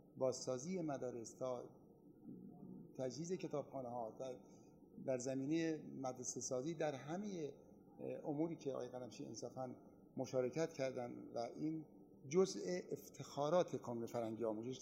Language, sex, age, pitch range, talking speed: Persian, male, 50-69, 125-155 Hz, 95 wpm